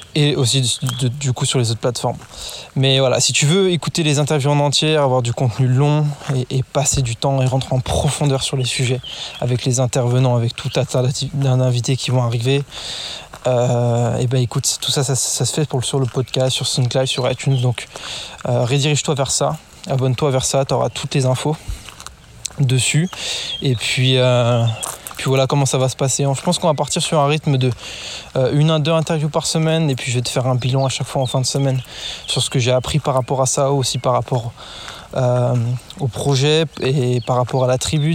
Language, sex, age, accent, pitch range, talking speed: French, male, 20-39, French, 125-145 Hz, 215 wpm